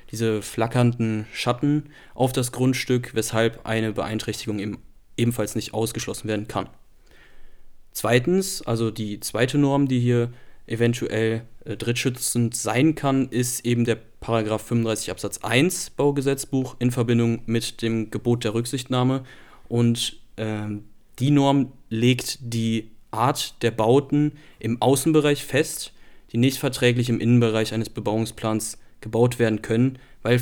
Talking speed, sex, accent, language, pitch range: 130 wpm, male, German, German, 110-125 Hz